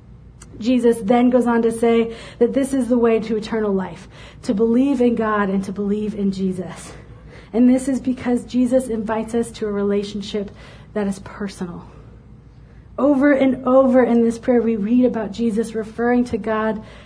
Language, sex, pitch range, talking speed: English, female, 205-250 Hz, 170 wpm